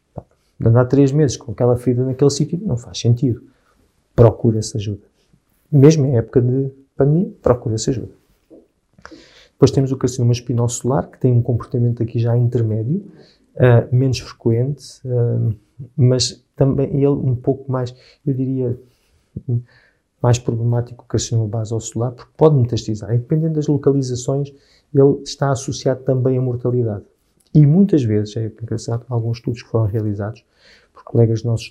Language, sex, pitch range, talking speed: Portuguese, male, 115-140 Hz, 150 wpm